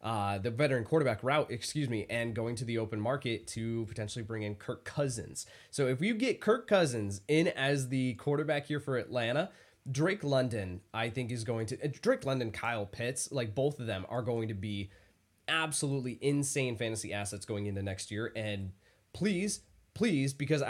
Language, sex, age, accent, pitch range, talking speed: English, male, 20-39, American, 110-155 Hz, 185 wpm